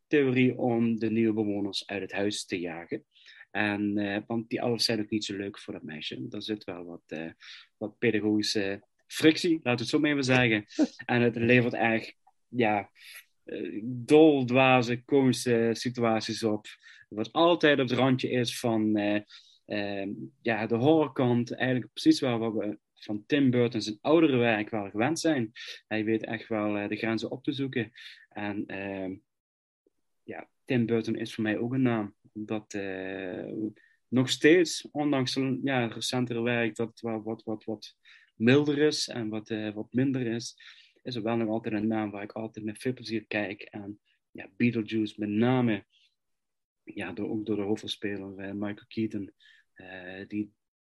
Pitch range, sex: 105-125 Hz, male